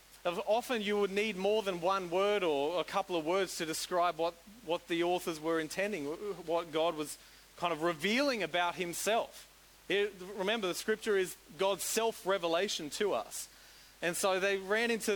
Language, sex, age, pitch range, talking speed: English, male, 30-49, 160-195 Hz, 170 wpm